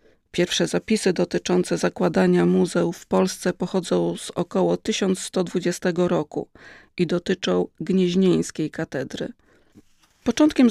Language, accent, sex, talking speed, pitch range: Polish, native, female, 95 wpm, 175-200 Hz